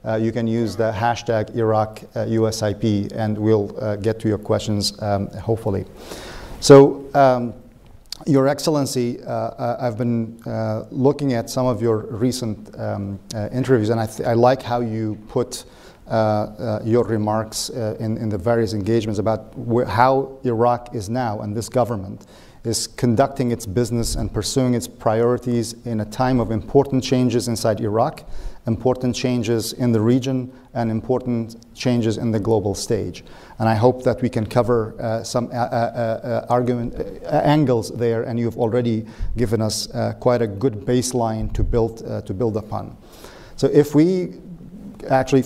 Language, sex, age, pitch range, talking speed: English, male, 40-59, 110-125 Hz, 165 wpm